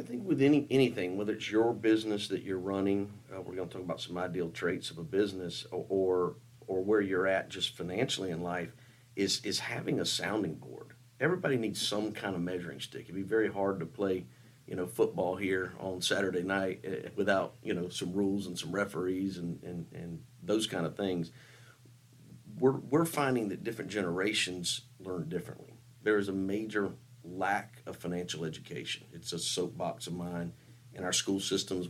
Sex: male